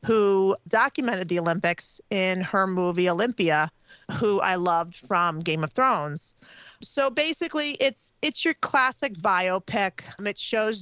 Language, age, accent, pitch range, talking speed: English, 40-59, American, 195-230 Hz, 135 wpm